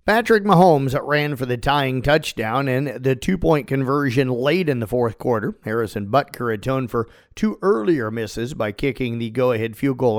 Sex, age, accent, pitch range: male, 40-59, American, 115-155 Hz